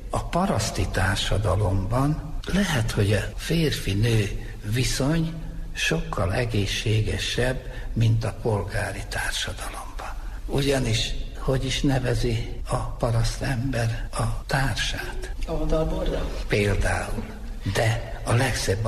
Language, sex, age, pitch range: Hungarian, male, 60-79, 105-140 Hz